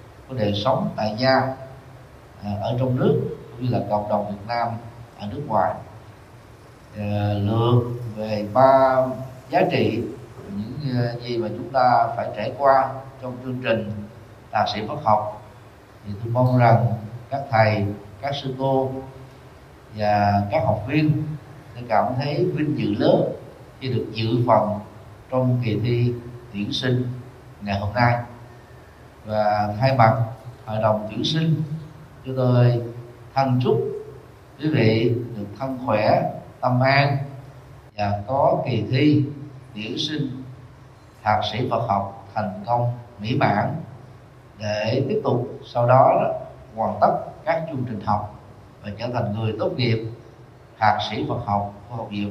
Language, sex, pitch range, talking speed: Vietnamese, male, 110-130 Hz, 140 wpm